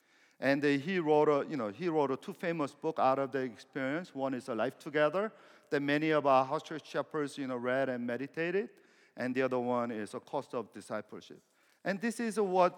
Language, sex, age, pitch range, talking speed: English, male, 50-69, 165-255 Hz, 210 wpm